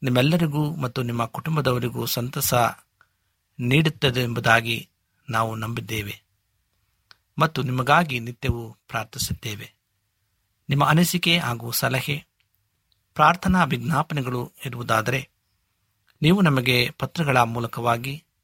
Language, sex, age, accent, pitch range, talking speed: Kannada, male, 50-69, native, 105-140 Hz, 80 wpm